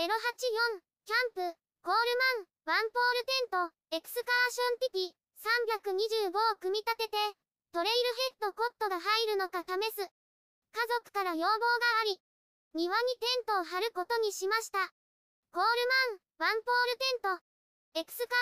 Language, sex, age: Japanese, male, 20-39